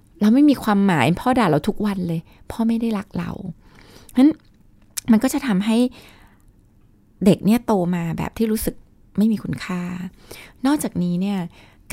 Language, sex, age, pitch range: Thai, female, 20-39, 170-225 Hz